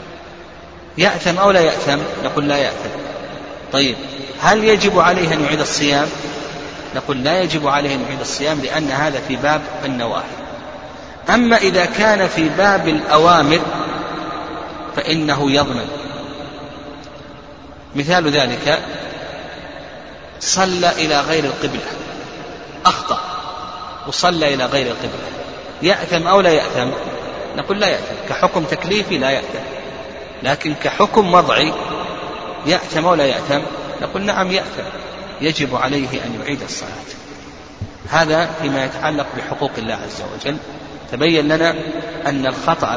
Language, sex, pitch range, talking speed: Arabic, male, 140-180 Hz, 115 wpm